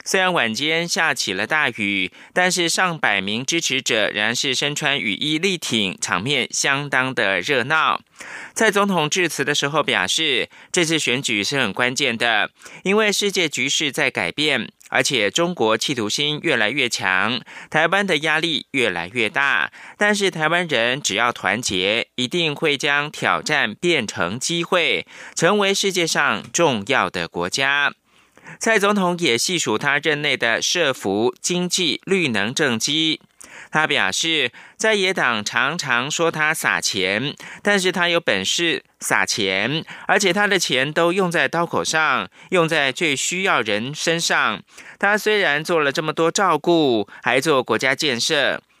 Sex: male